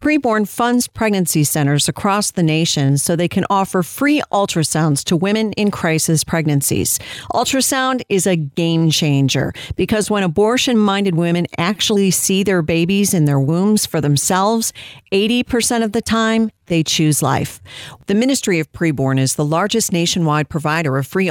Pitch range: 145-200 Hz